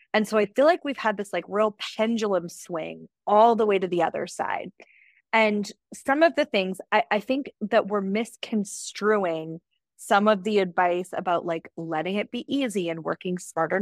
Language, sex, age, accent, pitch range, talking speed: English, female, 20-39, American, 185-235 Hz, 185 wpm